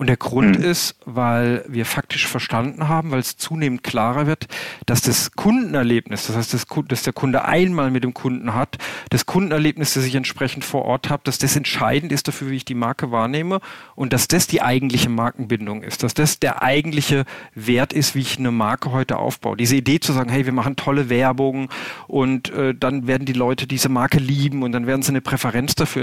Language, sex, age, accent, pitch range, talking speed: German, male, 40-59, German, 125-155 Hz, 205 wpm